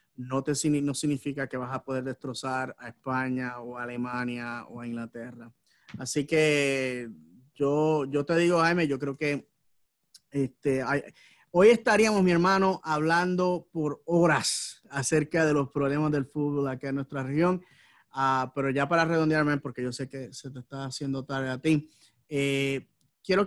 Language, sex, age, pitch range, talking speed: English, male, 30-49, 130-160 Hz, 160 wpm